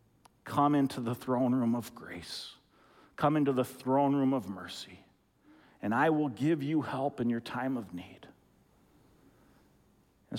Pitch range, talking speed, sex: 120-150 Hz, 150 wpm, male